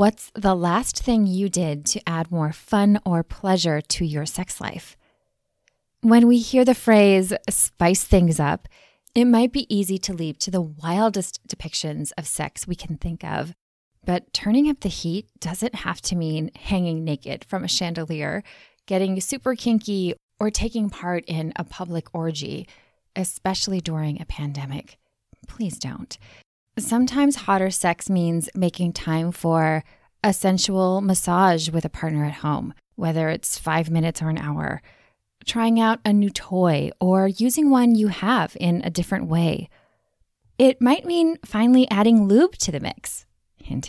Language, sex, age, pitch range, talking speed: English, female, 20-39, 165-220 Hz, 160 wpm